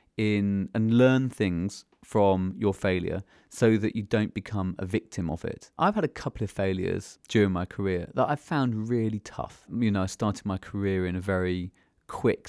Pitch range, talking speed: 95-115 Hz, 190 wpm